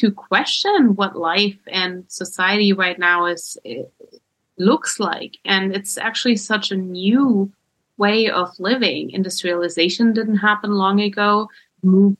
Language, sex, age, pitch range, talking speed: English, female, 20-39, 185-225 Hz, 130 wpm